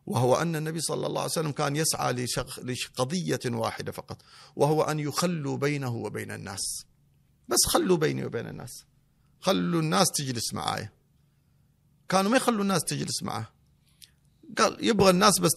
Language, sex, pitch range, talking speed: Arabic, male, 120-160 Hz, 150 wpm